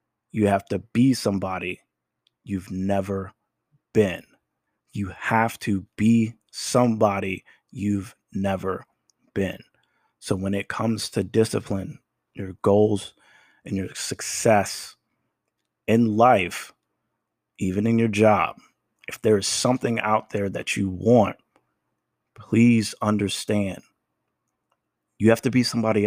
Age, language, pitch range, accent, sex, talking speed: 30-49, English, 100-115 Hz, American, male, 115 wpm